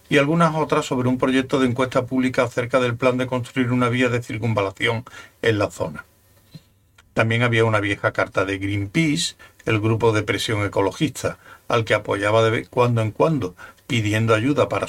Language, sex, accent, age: Spanish, male, Spanish, 60-79